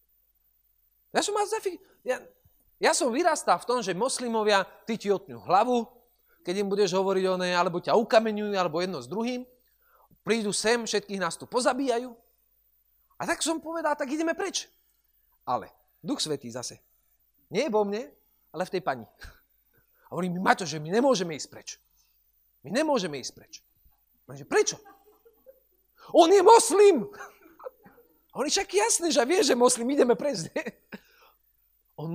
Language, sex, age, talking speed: Slovak, male, 40-59, 145 wpm